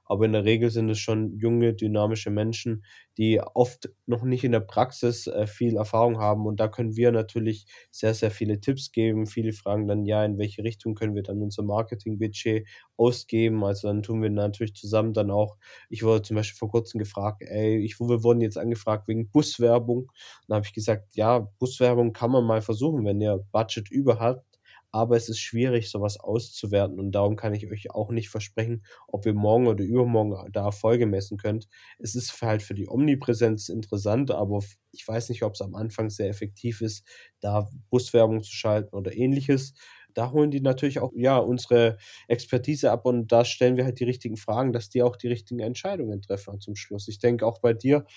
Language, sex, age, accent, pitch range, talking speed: German, male, 20-39, German, 105-120 Hz, 200 wpm